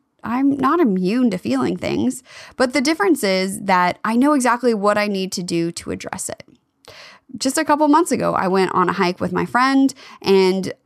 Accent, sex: American, female